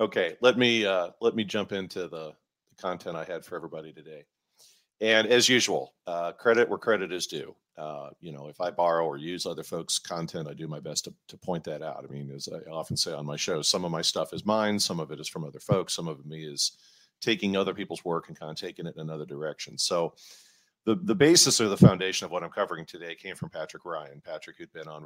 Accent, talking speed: American, 245 wpm